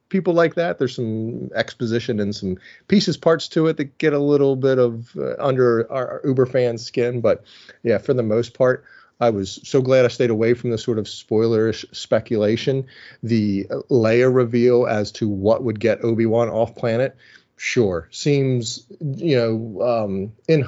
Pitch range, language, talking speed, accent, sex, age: 110-130 Hz, English, 175 wpm, American, male, 30-49